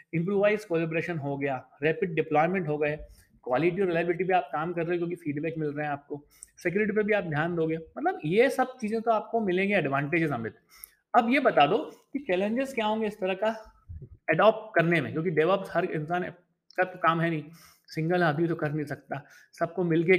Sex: male